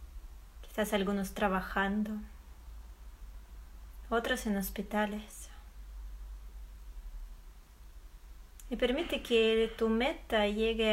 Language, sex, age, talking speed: Spanish, female, 20-39, 65 wpm